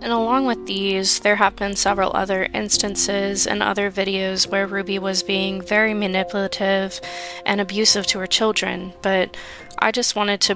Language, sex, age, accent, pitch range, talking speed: English, female, 20-39, American, 180-220 Hz, 165 wpm